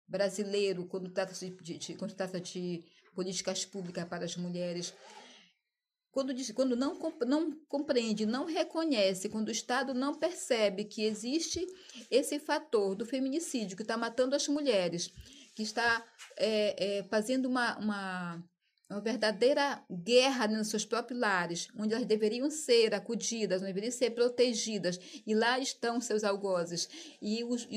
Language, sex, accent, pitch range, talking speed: Portuguese, female, Brazilian, 185-245 Hz, 130 wpm